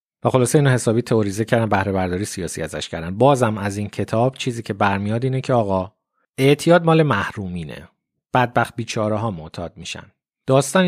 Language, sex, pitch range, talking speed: Persian, male, 100-130 Hz, 165 wpm